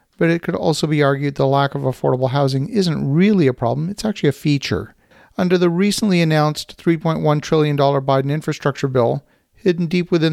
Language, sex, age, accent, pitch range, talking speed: English, male, 40-59, American, 140-170 Hz, 180 wpm